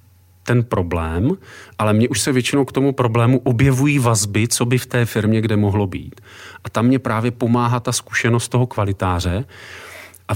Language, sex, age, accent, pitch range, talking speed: Czech, male, 40-59, native, 105-130 Hz, 175 wpm